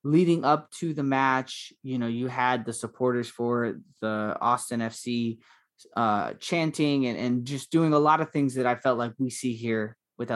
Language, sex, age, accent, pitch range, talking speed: English, male, 20-39, American, 115-135 Hz, 190 wpm